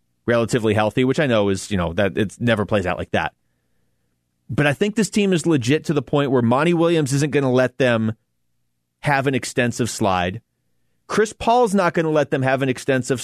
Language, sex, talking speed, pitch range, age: English, male, 215 wpm, 110-160 Hz, 30-49